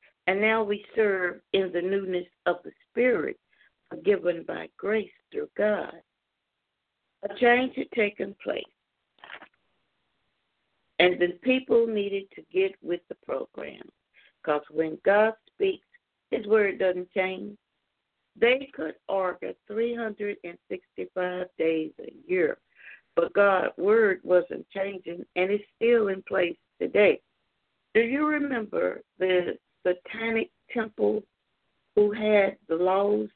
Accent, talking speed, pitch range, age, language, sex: American, 115 wpm, 180-230 Hz, 60-79, English, female